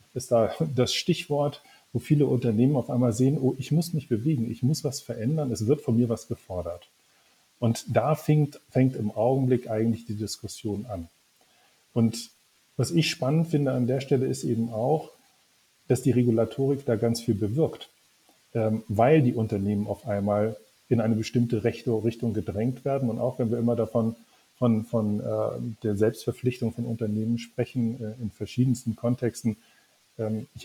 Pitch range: 110-130 Hz